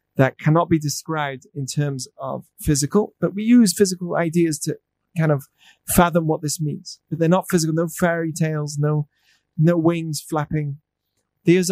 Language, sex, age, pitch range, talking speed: English, male, 30-49, 150-190 Hz, 165 wpm